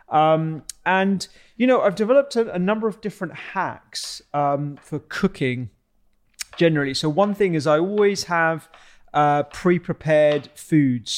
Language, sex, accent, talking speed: English, male, British, 140 wpm